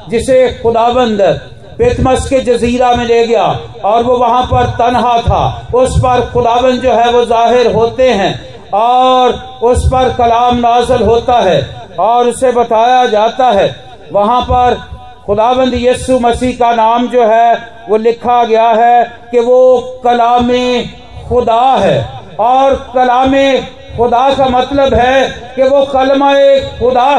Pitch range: 230-265 Hz